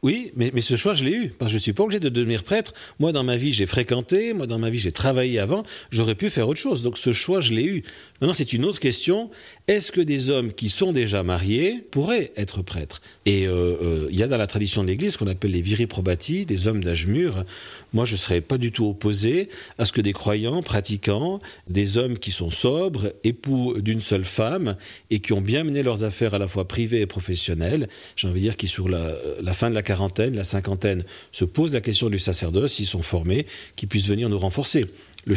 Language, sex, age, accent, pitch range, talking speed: French, male, 40-59, French, 100-130 Hz, 245 wpm